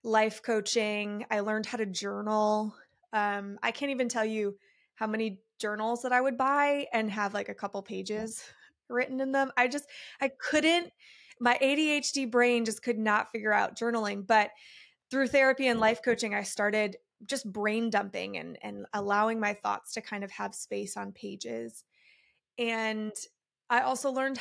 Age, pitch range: 20-39, 210-250 Hz